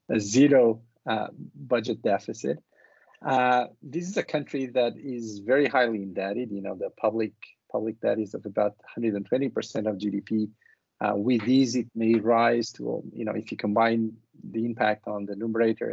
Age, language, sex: 50-69, Portuguese, male